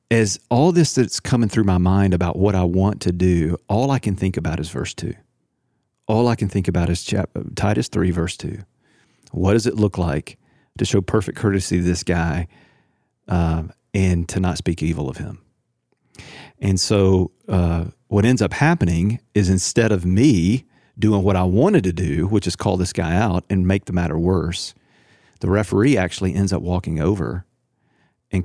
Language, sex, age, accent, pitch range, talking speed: English, male, 40-59, American, 90-105 Hz, 185 wpm